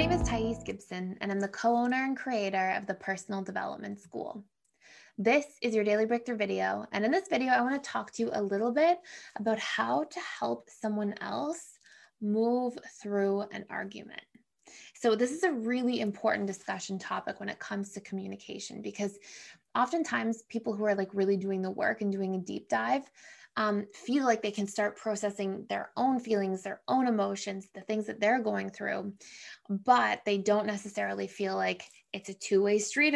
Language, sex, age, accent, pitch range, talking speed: English, female, 20-39, American, 200-235 Hz, 185 wpm